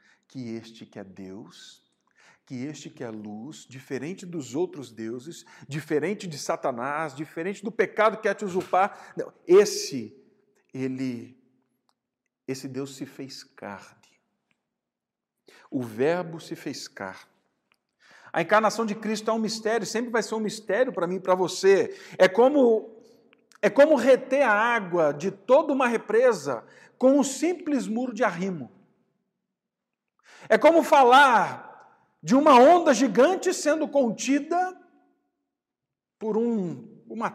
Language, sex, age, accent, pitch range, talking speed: Portuguese, male, 50-69, Brazilian, 160-230 Hz, 130 wpm